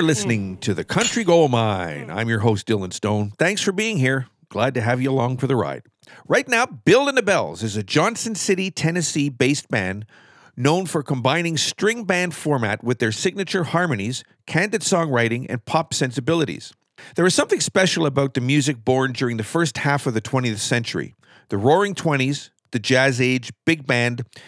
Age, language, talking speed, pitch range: 50-69, English, 185 wpm, 125-170 Hz